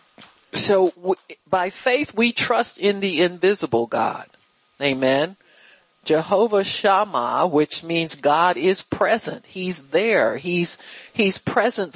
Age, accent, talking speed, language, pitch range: 50-69, American, 110 wpm, English, 155-220 Hz